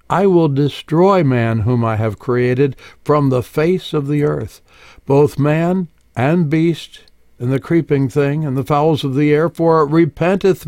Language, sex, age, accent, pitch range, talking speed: English, male, 60-79, American, 125-160 Hz, 175 wpm